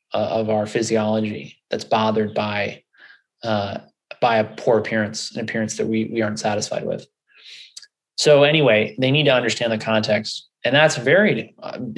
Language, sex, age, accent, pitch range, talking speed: Dutch, male, 20-39, American, 110-125 Hz, 155 wpm